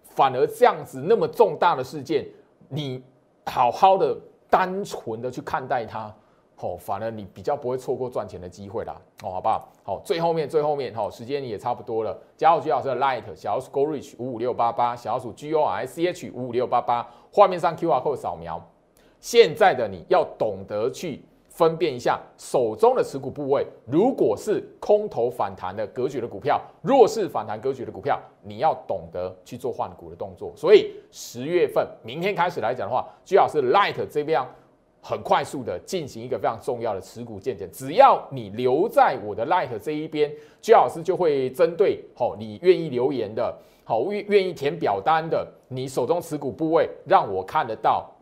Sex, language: male, Chinese